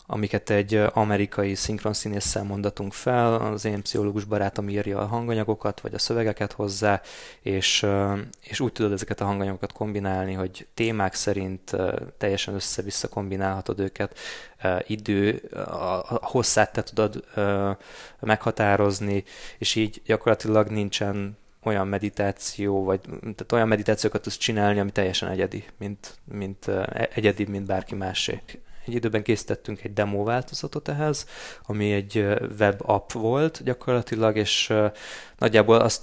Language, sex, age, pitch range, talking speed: Hungarian, male, 20-39, 100-110 Hz, 125 wpm